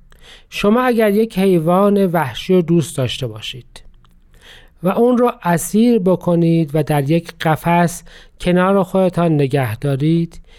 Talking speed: 125 wpm